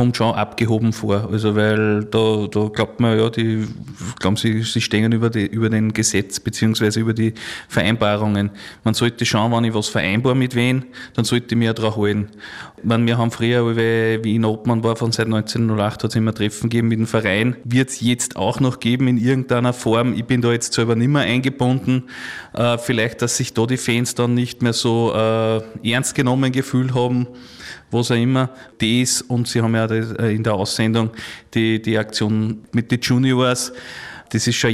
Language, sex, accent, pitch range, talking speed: German, male, Austrian, 110-125 Hz, 195 wpm